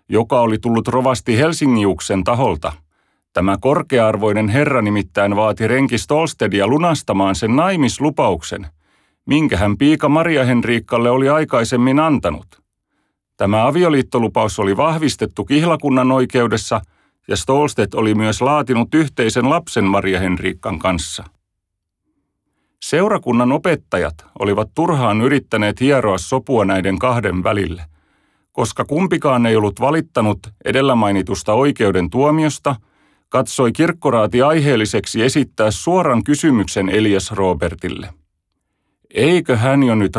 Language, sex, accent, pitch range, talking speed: Finnish, male, native, 95-130 Hz, 105 wpm